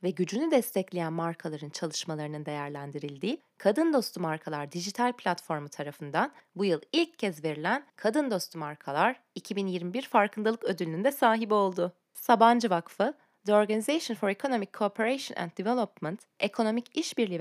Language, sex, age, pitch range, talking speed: Turkish, female, 30-49, 170-240 Hz, 130 wpm